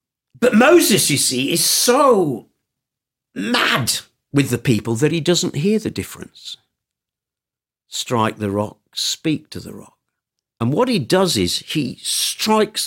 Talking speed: 140 wpm